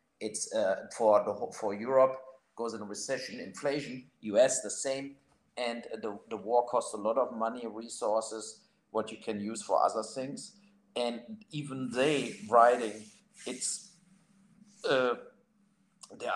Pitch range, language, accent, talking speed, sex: 115-175 Hz, English, German, 135 wpm, male